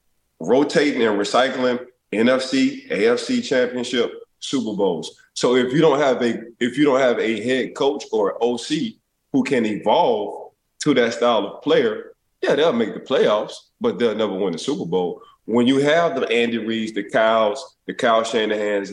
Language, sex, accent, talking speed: English, male, American, 175 wpm